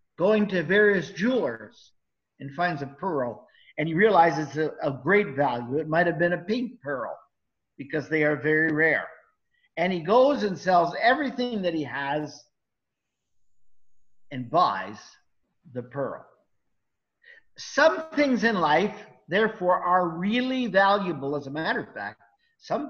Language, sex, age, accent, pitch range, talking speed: English, male, 50-69, American, 150-220 Hz, 140 wpm